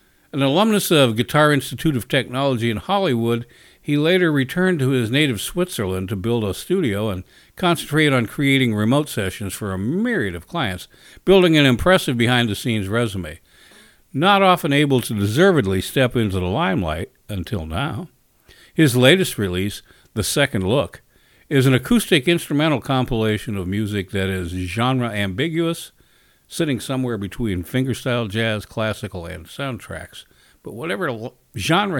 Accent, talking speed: American, 140 wpm